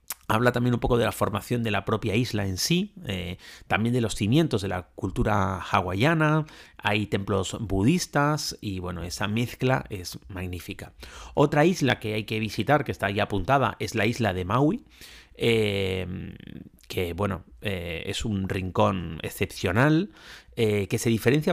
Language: Spanish